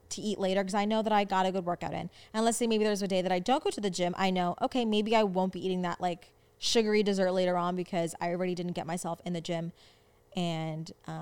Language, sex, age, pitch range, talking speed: English, female, 20-39, 170-225 Hz, 275 wpm